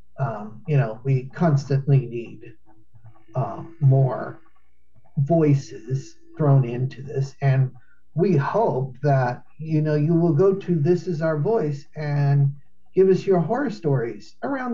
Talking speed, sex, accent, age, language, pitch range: 135 wpm, male, American, 50-69, English, 130-165 Hz